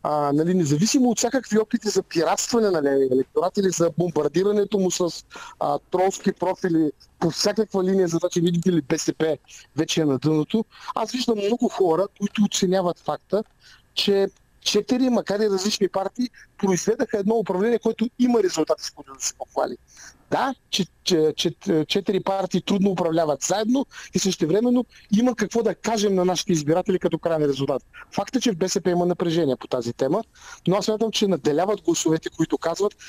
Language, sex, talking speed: Bulgarian, male, 170 wpm